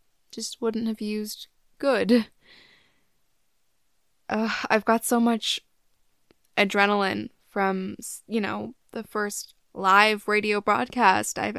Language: English